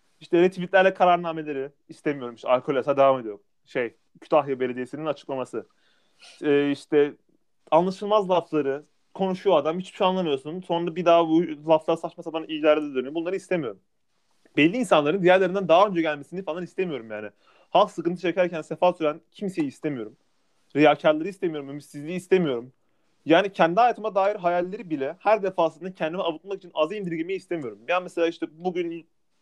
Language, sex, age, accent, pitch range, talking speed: Turkish, male, 30-49, native, 150-190 Hz, 145 wpm